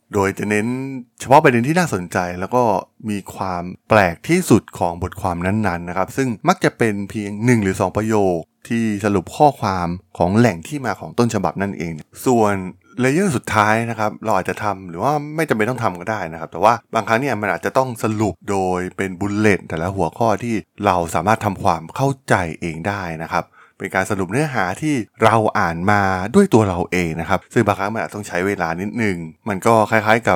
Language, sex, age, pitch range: Thai, male, 20-39, 90-115 Hz